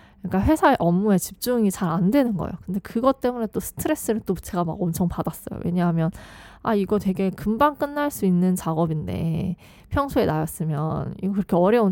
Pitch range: 180-240 Hz